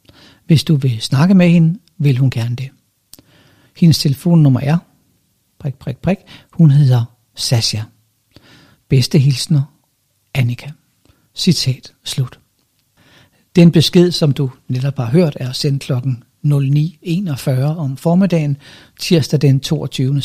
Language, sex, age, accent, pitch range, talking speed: Danish, male, 60-79, native, 130-165 Hz, 120 wpm